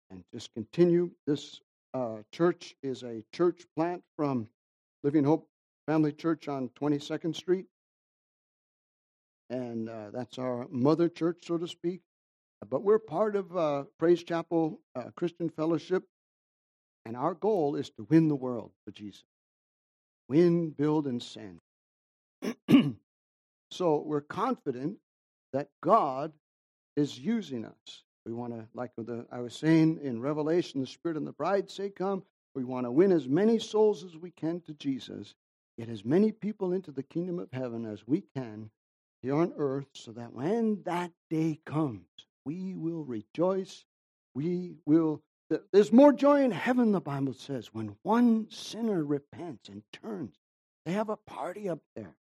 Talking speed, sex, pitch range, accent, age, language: 155 wpm, male, 120-175 Hz, American, 60-79, English